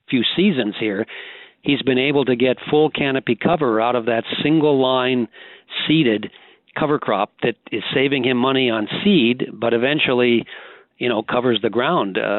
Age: 50-69